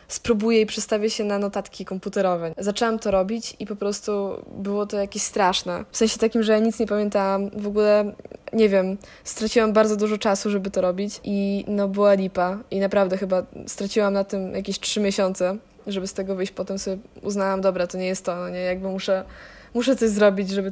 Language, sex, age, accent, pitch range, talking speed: Polish, female, 20-39, native, 195-210 Hz, 200 wpm